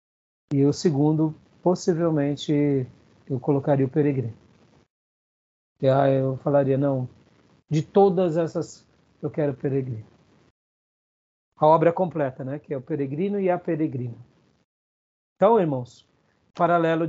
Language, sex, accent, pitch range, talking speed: Portuguese, male, Brazilian, 135-175 Hz, 115 wpm